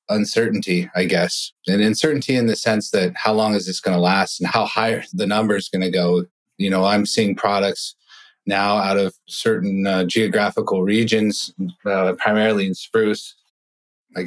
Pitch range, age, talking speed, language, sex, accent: 95-110 Hz, 30-49, 175 wpm, English, male, American